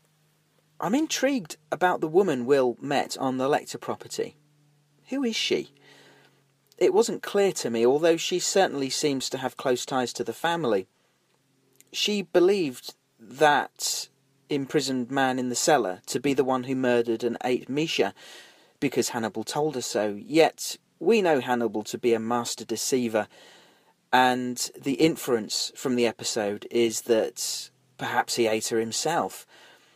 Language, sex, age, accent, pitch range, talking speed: English, male, 40-59, British, 125-175 Hz, 150 wpm